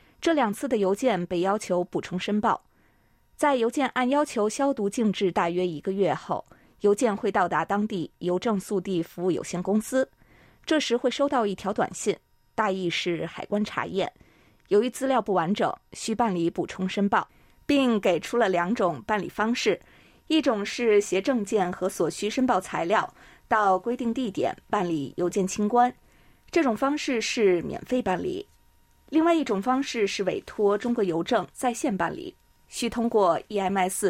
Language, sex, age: Chinese, female, 20-39